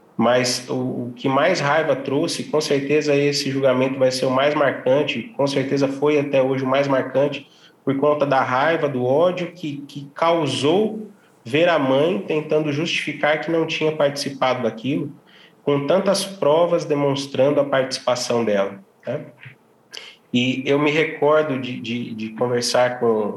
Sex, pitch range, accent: male, 125-150 Hz, Brazilian